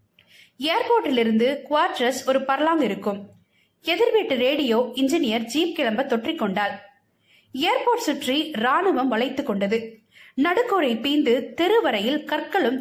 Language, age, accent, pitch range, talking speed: Tamil, 20-39, native, 230-325 Hz, 85 wpm